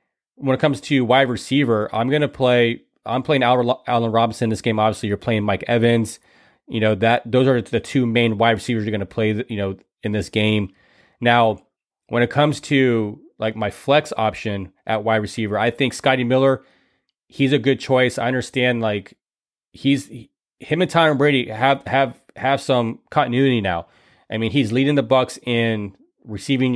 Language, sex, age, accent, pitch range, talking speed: English, male, 30-49, American, 110-130 Hz, 185 wpm